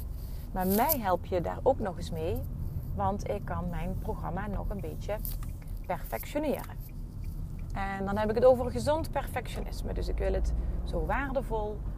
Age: 30-49